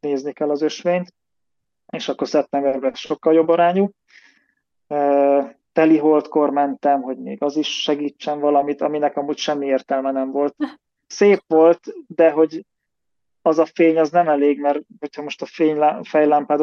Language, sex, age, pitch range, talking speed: Hungarian, male, 20-39, 145-160 Hz, 150 wpm